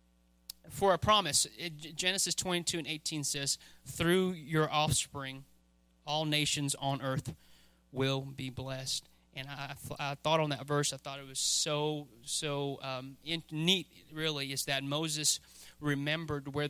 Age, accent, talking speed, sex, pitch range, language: 30-49, American, 150 wpm, male, 130-150 Hz, English